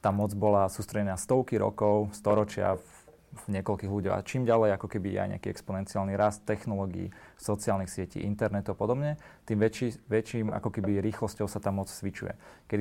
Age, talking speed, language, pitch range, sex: 30-49, 170 wpm, Slovak, 100-115 Hz, male